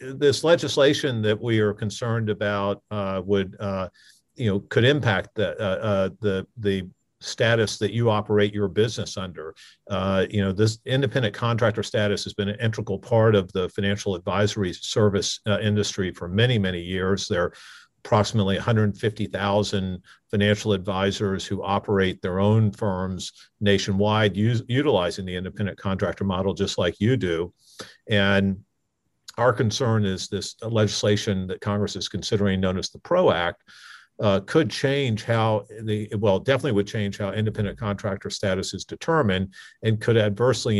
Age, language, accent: 50-69, English, American